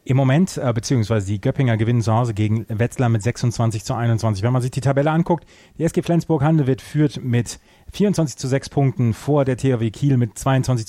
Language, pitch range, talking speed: German, 115-140 Hz, 200 wpm